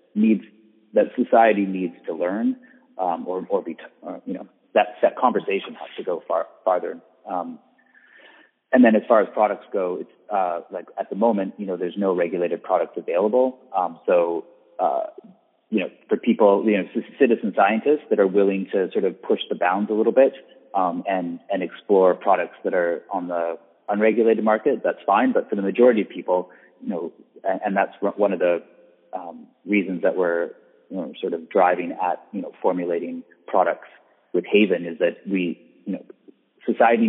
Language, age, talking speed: English, 30-49, 185 wpm